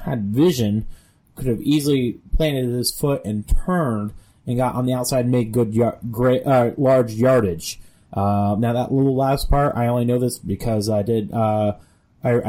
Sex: male